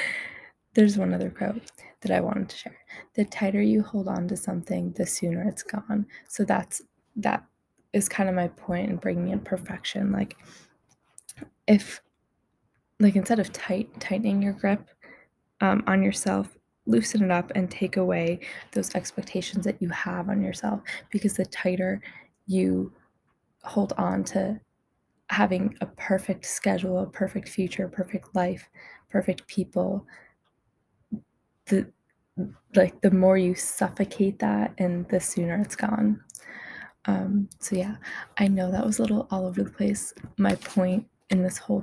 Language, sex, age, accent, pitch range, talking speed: English, female, 10-29, American, 185-210 Hz, 155 wpm